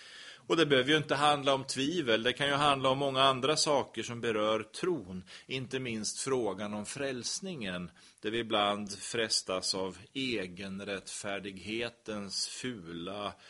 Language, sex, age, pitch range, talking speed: Swedish, male, 30-49, 105-135 Hz, 140 wpm